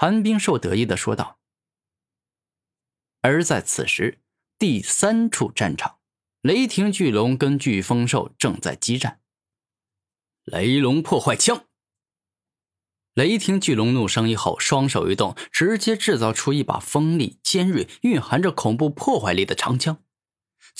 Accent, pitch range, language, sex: native, 110-165 Hz, Chinese, male